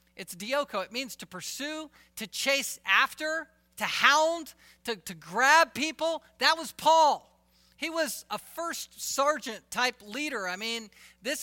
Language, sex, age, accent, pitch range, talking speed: English, male, 40-59, American, 185-260 Hz, 145 wpm